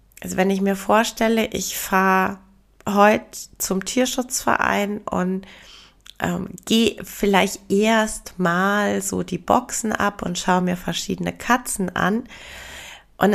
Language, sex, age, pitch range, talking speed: German, female, 30-49, 180-220 Hz, 120 wpm